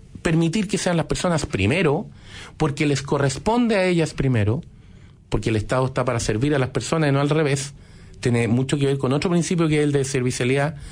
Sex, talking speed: male, 205 wpm